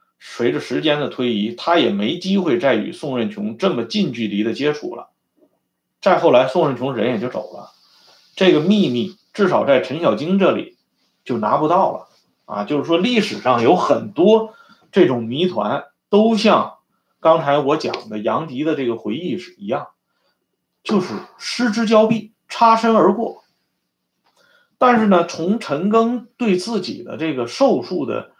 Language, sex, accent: Swedish, male, Chinese